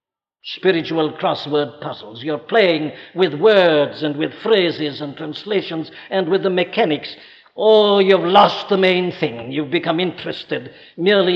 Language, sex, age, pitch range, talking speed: English, male, 60-79, 145-200 Hz, 130 wpm